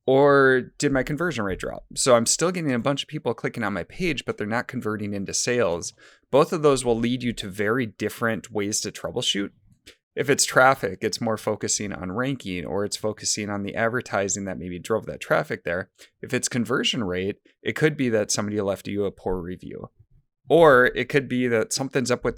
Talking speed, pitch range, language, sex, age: 210 wpm, 105-130 Hz, English, male, 30-49